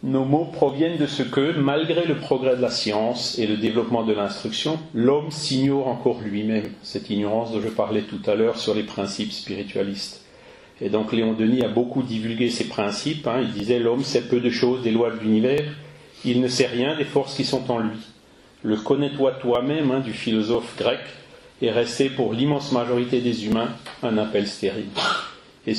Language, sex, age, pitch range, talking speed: French, male, 40-59, 110-135 Hz, 200 wpm